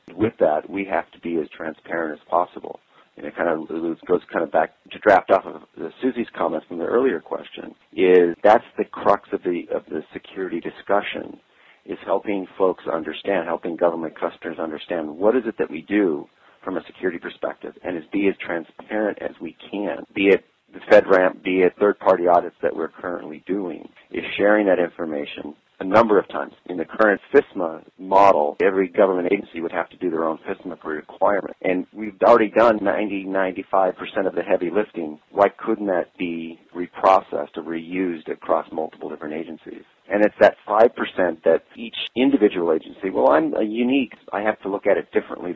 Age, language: 40-59, English